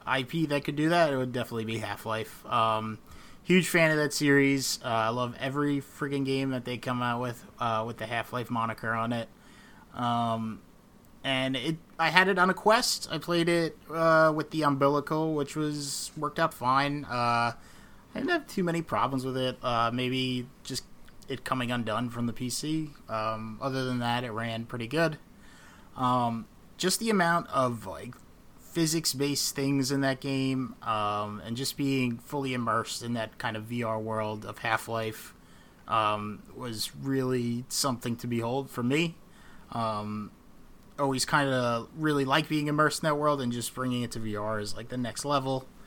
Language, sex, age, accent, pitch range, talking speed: English, male, 20-39, American, 115-150 Hz, 180 wpm